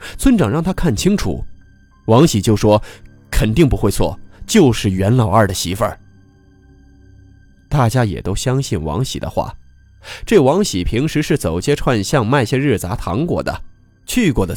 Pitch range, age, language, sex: 95-120 Hz, 20-39, Chinese, male